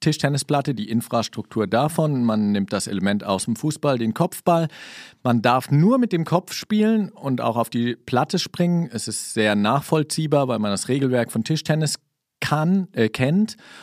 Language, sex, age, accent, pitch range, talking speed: German, male, 40-59, German, 105-140 Hz, 165 wpm